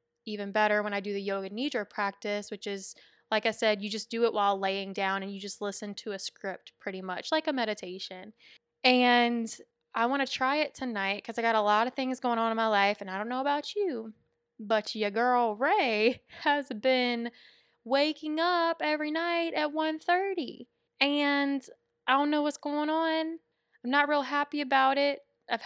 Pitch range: 210-265 Hz